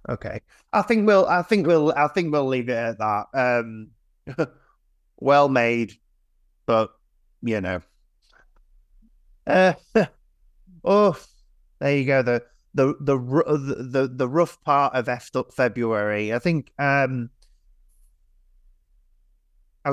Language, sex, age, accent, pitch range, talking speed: English, male, 30-49, British, 100-135 Hz, 120 wpm